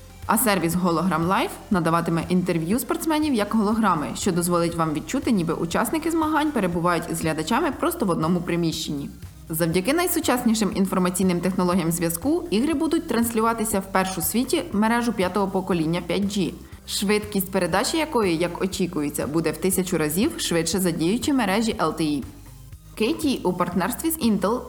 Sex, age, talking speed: female, 20-39, 140 wpm